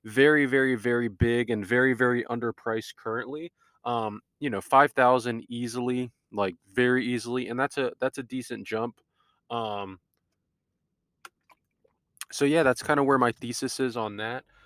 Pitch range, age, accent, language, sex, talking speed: 110-130 Hz, 20-39, American, English, male, 150 wpm